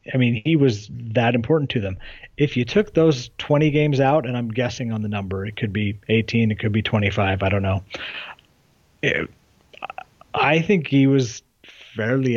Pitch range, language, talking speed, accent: 110-135 Hz, English, 180 wpm, American